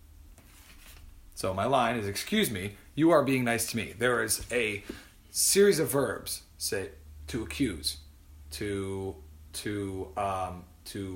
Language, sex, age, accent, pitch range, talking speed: English, male, 30-49, American, 80-125 Hz, 135 wpm